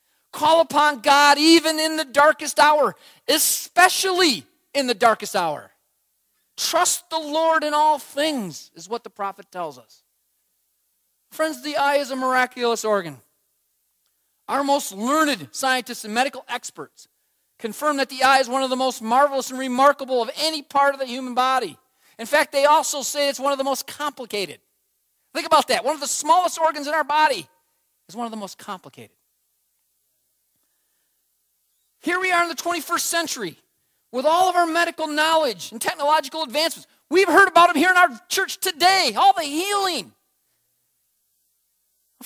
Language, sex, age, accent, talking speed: English, male, 40-59, American, 165 wpm